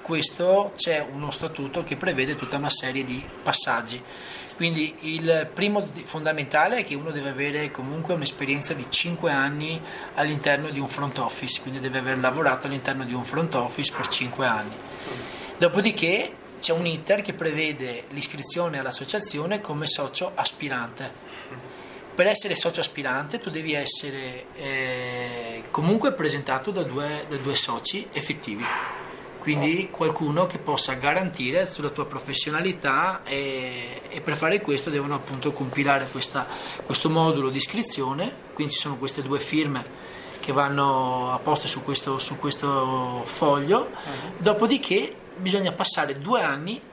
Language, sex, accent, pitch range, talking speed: Italian, male, native, 135-175 Hz, 135 wpm